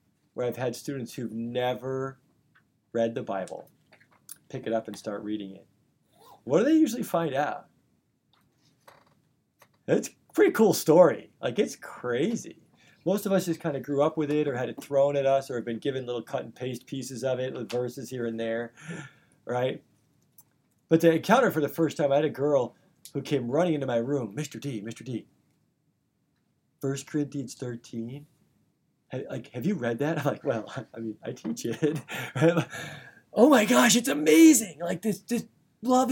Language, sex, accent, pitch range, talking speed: English, male, American, 130-200 Hz, 185 wpm